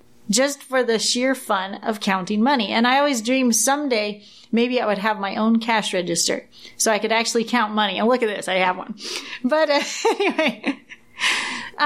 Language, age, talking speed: English, 30-49, 180 wpm